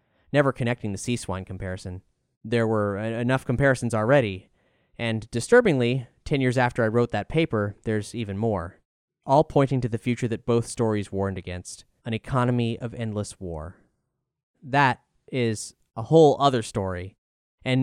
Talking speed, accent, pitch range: 150 wpm, American, 105-130 Hz